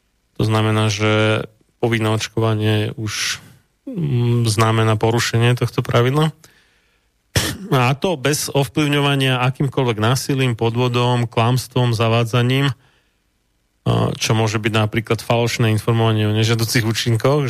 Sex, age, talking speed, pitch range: male, 30-49, 95 wpm, 110-130 Hz